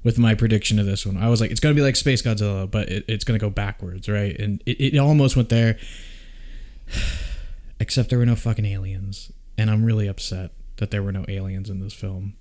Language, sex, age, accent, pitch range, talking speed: English, male, 20-39, American, 100-130 Hz, 225 wpm